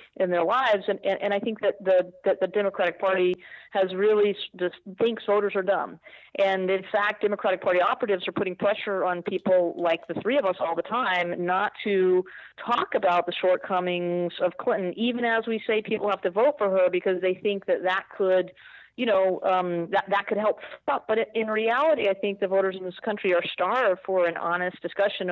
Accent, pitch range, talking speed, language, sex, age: American, 175-205 Hz, 205 wpm, English, female, 40-59